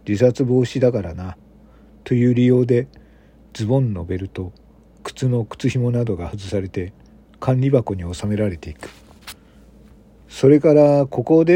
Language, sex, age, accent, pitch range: Japanese, male, 50-69, native, 100-135 Hz